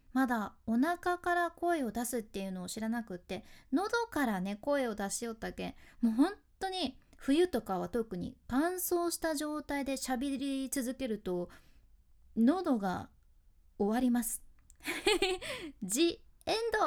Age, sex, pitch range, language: 20-39, female, 215-315 Hz, Japanese